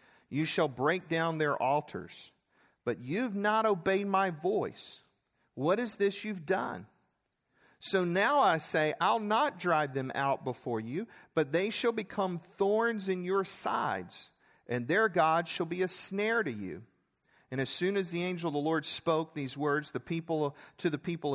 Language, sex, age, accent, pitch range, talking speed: English, male, 40-59, American, 145-185 Hz, 175 wpm